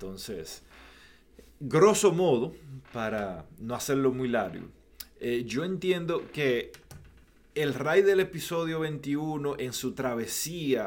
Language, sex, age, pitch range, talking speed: Spanish, male, 30-49, 115-145 Hz, 110 wpm